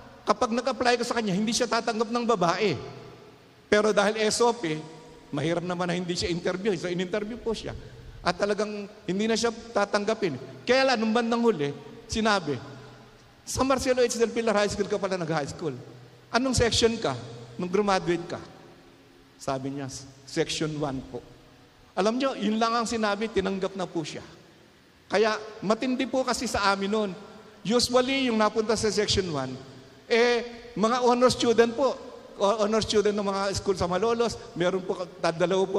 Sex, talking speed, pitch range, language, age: male, 160 wpm, 175-230 Hz, Filipino, 50-69